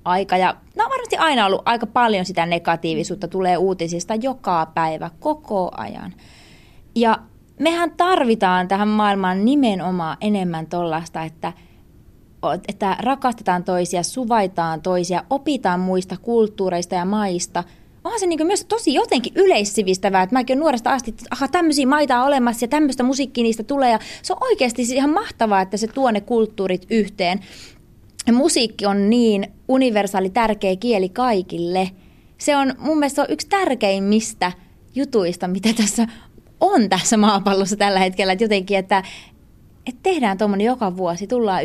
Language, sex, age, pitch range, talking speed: Finnish, female, 20-39, 185-250 Hz, 145 wpm